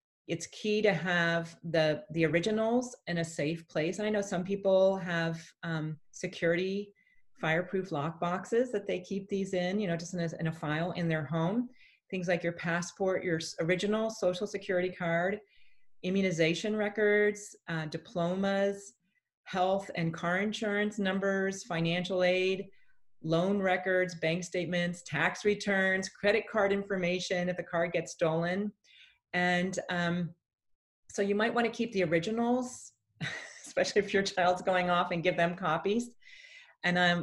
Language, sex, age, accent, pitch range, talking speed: English, female, 40-59, American, 165-200 Hz, 150 wpm